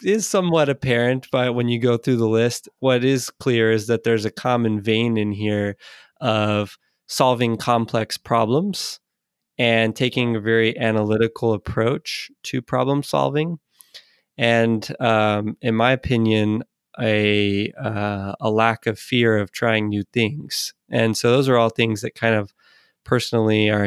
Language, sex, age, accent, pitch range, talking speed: English, male, 20-39, American, 110-125 Hz, 150 wpm